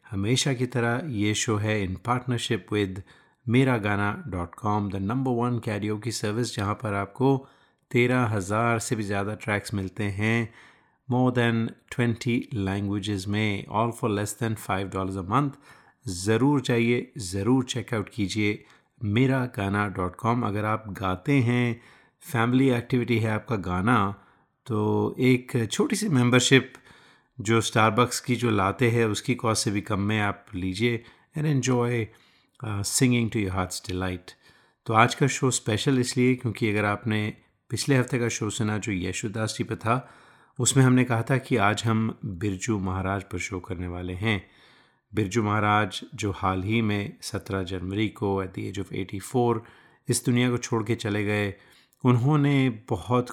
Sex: male